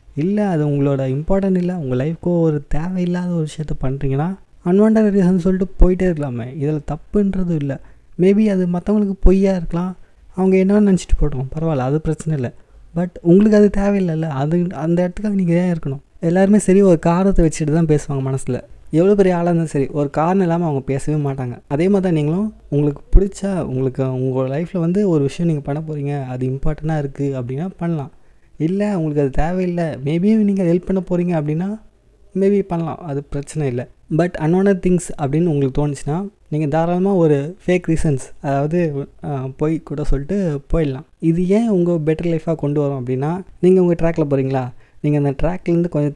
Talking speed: 170 wpm